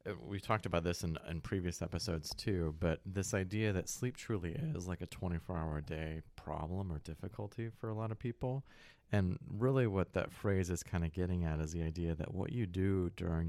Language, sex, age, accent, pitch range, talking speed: English, male, 30-49, American, 80-105 Hz, 205 wpm